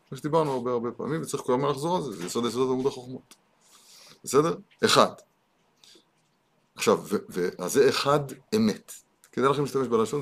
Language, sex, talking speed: Hebrew, male, 155 wpm